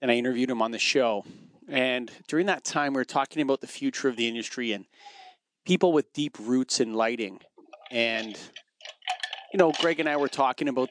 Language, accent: English, American